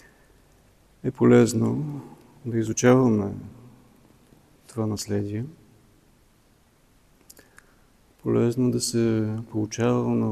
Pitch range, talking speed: 110-125 Hz, 60 wpm